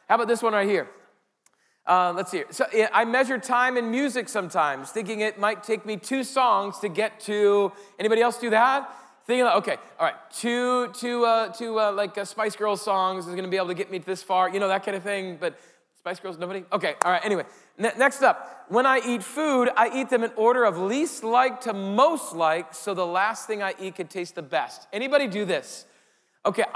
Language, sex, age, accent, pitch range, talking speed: English, male, 40-59, American, 185-245 Hz, 220 wpm